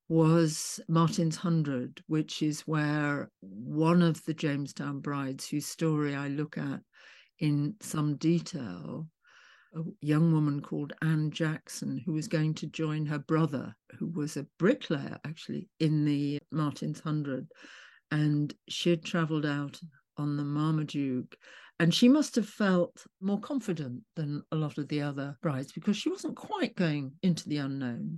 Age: 60-79